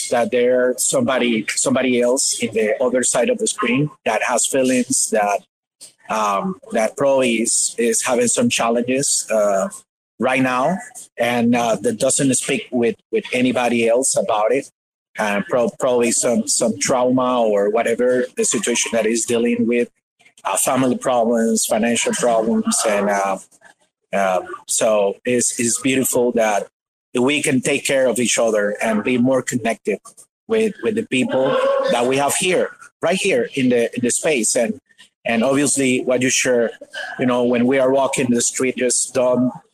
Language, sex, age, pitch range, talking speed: English, male, 30-49, 120-145 Hz, 165 wpm